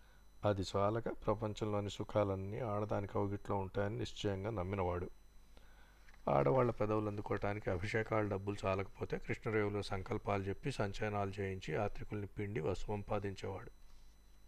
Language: Telugu